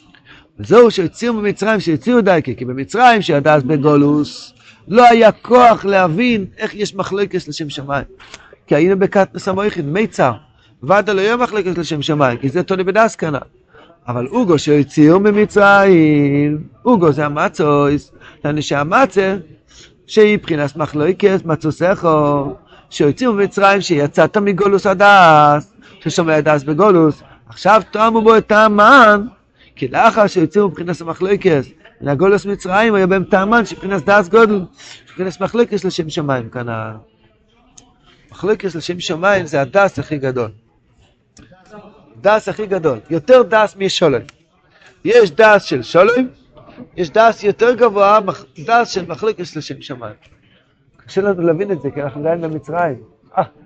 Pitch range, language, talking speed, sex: 150-205 Hz, Hebrew, 115 wpm, male